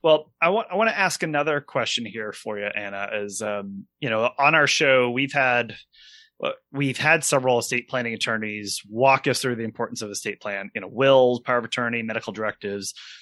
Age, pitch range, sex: 30-49, 115-150 Hz, male